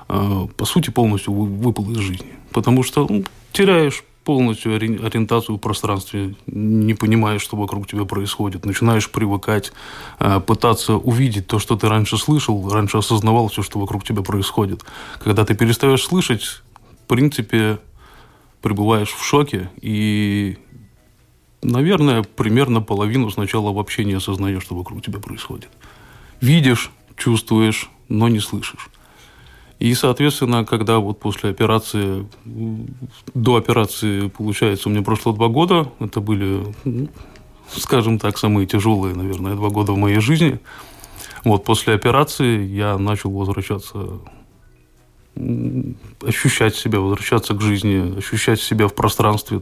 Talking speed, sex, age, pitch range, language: 125 wpm, male, 20-39, 100-120 Hz, Russian